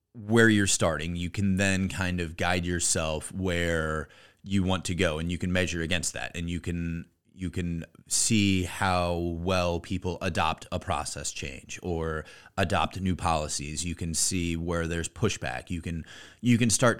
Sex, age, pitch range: male, 30-49, 85-105 Hz